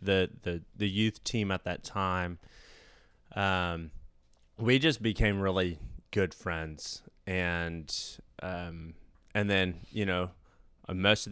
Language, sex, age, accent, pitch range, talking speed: English, male, 20-39, American, 85-100 Hz, 120 wpm